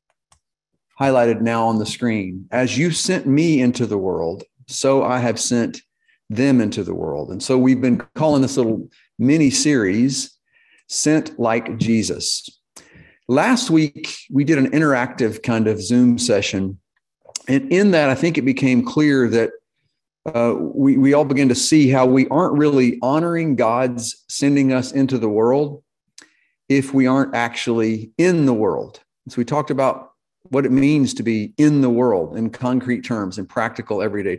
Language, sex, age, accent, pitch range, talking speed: English, male, 50-69, American, 115-145 Hz, 160 wpm